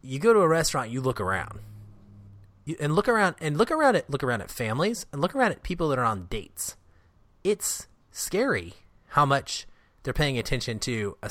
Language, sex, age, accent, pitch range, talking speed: English, male, 30-49, American, 105-145 Hz, 195 wpm